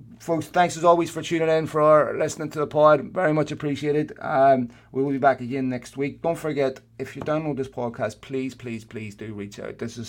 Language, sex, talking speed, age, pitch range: English, male, 225 wpm, 30-49, 110-125 Hz